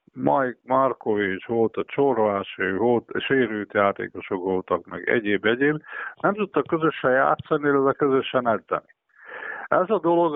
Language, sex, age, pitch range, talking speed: Hungarian, male, 50-69, 105-135 Hz, 125 wpm